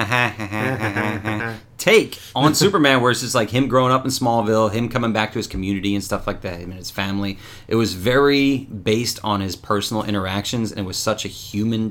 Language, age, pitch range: English, 30-49, 100-125 Hz